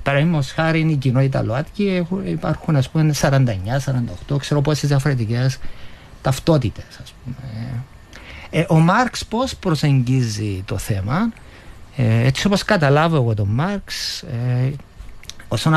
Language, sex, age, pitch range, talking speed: Greek, male, 50-69, 115-175 Hz, 120 wpm